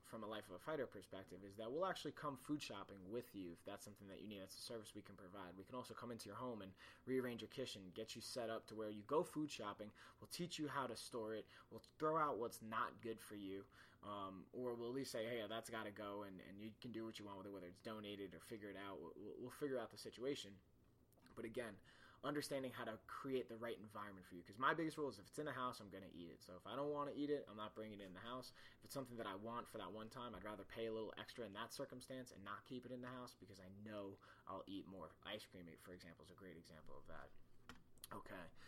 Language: English